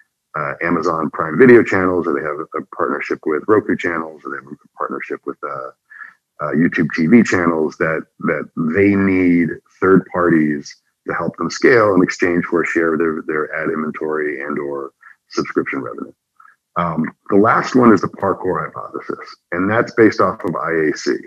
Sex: male